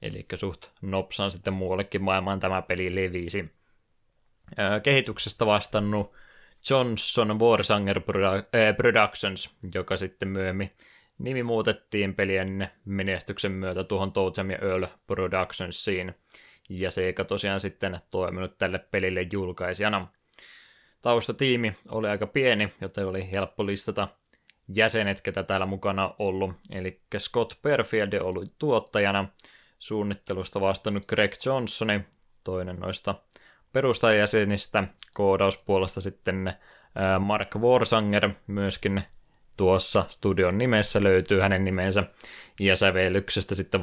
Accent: native